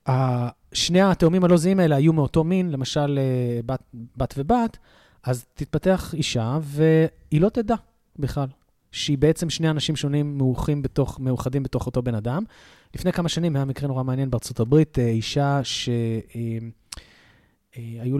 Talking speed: 140 wpm